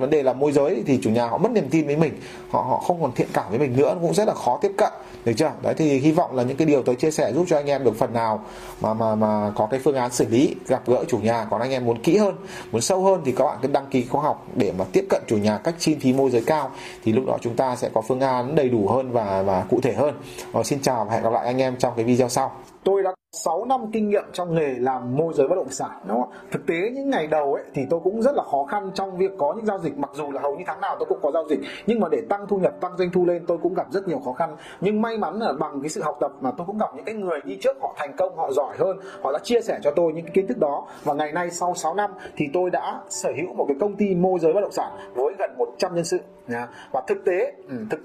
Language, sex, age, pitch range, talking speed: Vietnamese, male, 20-39, 130-195 Hz, 310 wpm